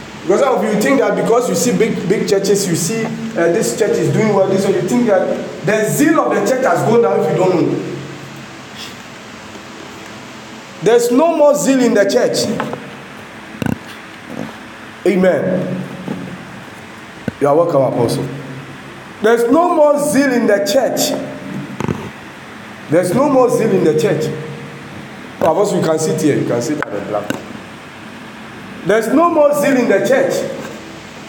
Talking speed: 160 wpm